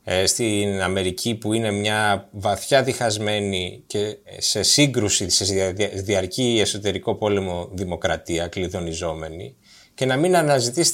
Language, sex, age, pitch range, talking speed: Greek, male, 20-39, 100-140 Hz, 110 wpm